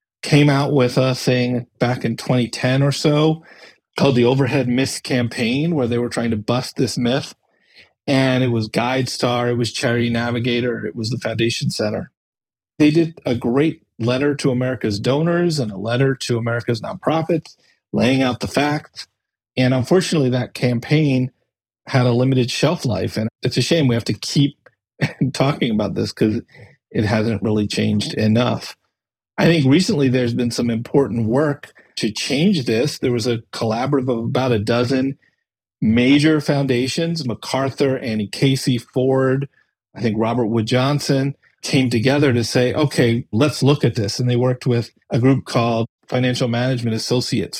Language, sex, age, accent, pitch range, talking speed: English, male, 40-59, American, 120-145 Hz, 165 wpm